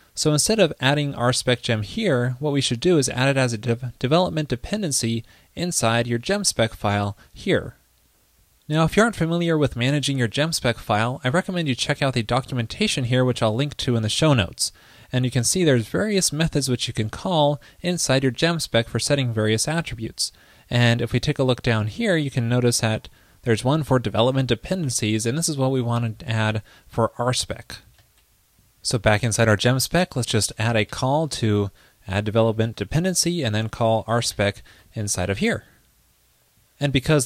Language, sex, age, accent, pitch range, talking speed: English, male, 20-39, American, 115-145 Hz, 190 wpm